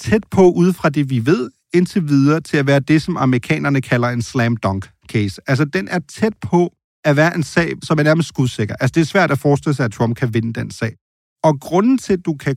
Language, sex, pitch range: Danish, male, 120-170 Hz